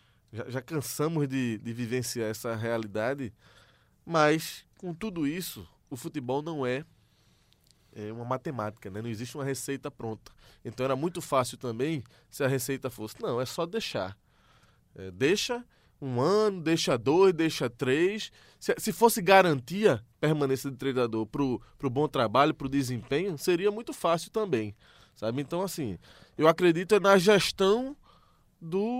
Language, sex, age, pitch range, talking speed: Portuguese, male, 20-39, 115-160 Hz, 145 wpm